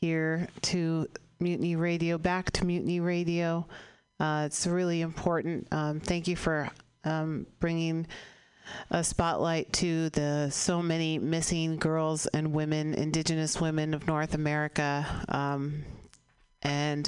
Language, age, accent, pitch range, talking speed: English, 40-59, American, 140-165 Hz, 125 wpm